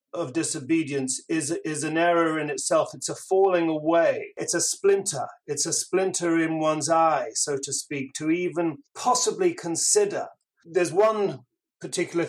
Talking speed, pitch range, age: 150 wpm, 150-180 Hz, 40-59